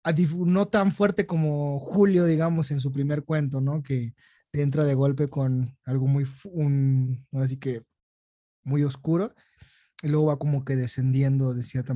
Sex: male